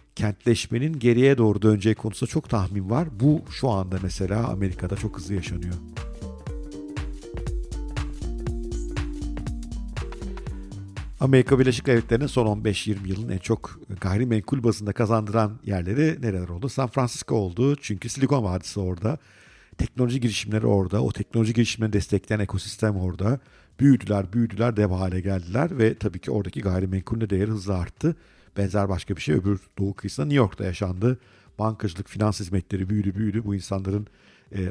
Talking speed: 135 wpm